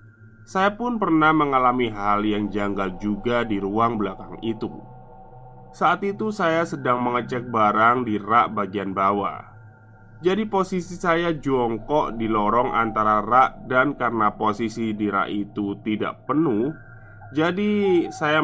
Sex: male